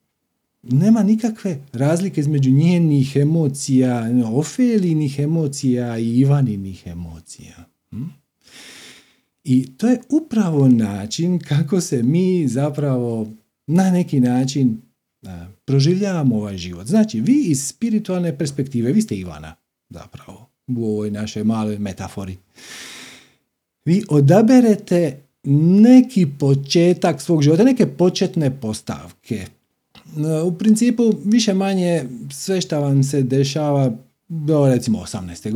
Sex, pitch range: male, 125-185 Hz